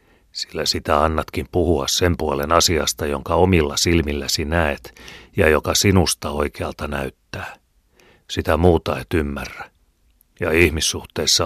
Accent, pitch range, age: native, 70-85 Hz, 40-59